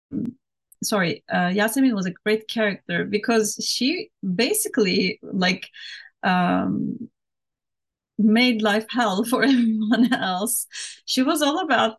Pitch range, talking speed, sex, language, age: 205-240 Hz, 110 wpm, female, English, 30-49